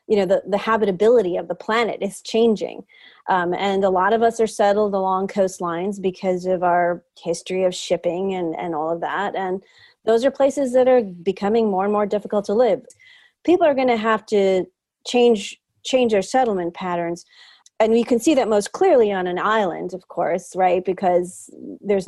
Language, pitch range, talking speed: English, 185-240 Hz, 190 wpm